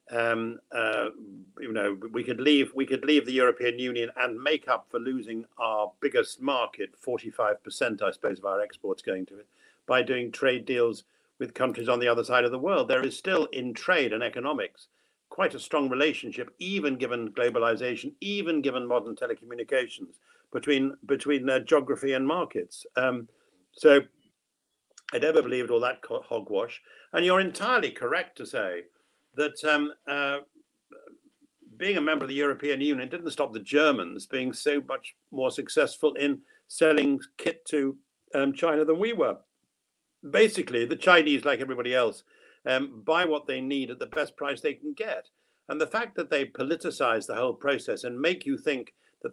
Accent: British